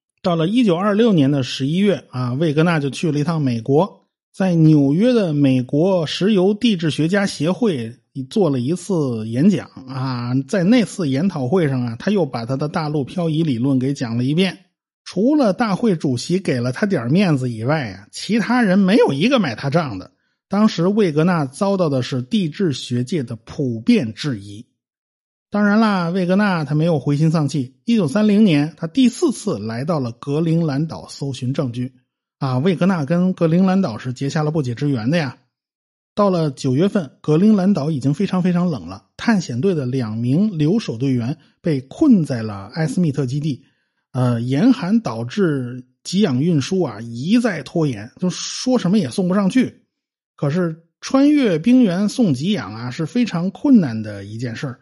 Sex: male